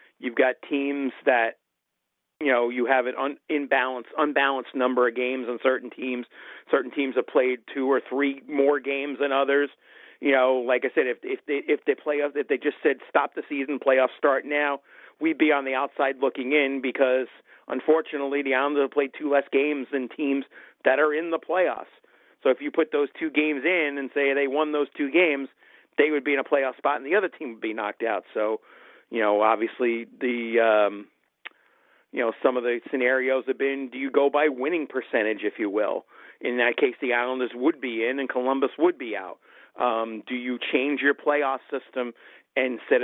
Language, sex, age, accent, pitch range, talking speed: English, male, 40-59, American, 125-145 Hz, 205 wpm